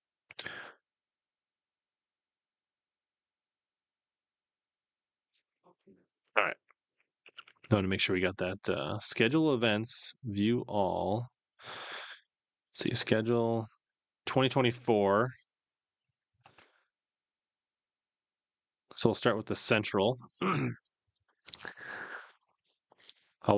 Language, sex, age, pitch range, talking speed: English, male, 30-49, 100-125 Hz, 60 wpm